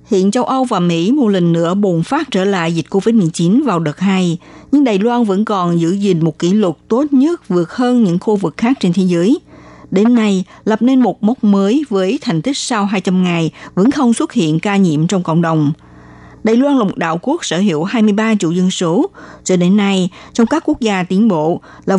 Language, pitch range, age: Vietnamese, 170-240 Hz, 60-79